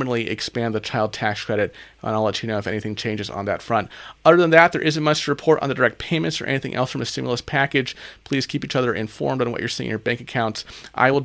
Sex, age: male, 30-49